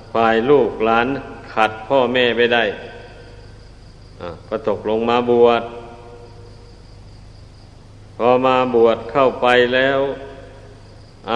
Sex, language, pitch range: male, Thai, 105-125 Hz